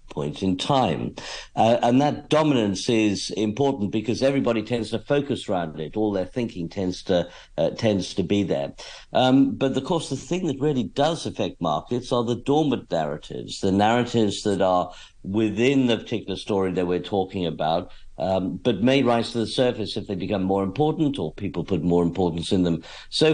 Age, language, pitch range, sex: 50-69, English, 95-125 Hz, male